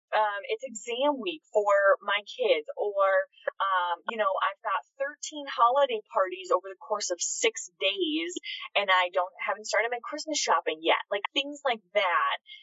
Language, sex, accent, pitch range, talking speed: English, female, American, 190-290 Hz, 165 wpm